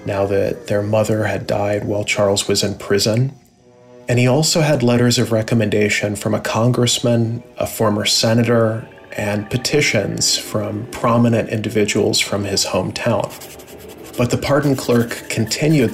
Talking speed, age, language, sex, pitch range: 140 wpm, 30-49, English, male, 105-120 Hz